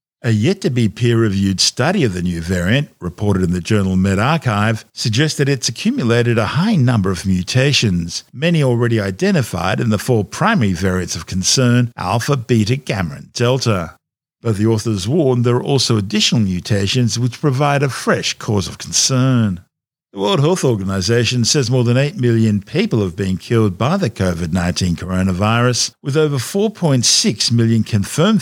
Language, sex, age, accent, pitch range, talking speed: English, male, 50-69, Australian, 100-135 Hz, 160 wpm